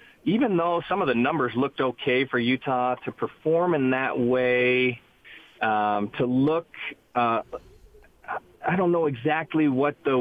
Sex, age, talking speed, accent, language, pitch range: male, 40-59, 145 wpm, American, English, 130-160 Hz